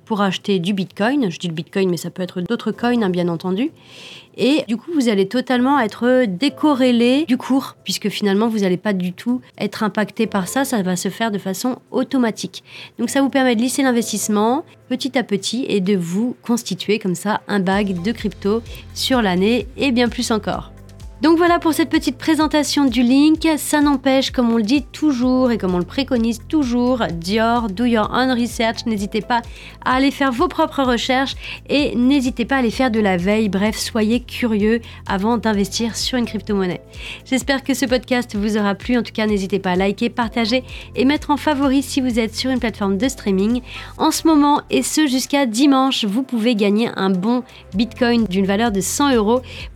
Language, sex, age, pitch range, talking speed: French, female, 40-59, 205-265 Hz, 200 wpm